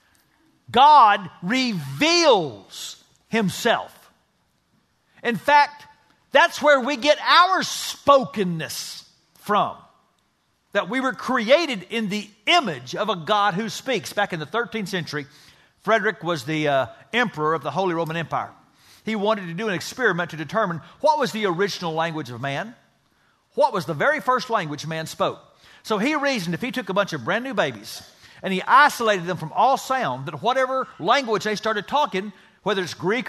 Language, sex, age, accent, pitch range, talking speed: English, male, 50-69, American, 170-245 Hz, 160 wpm